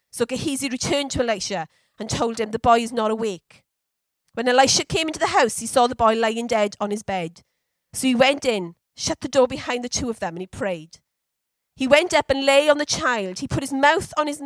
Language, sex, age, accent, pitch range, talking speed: English, female, 40-59, British, 220-290 Hz, 235 wpm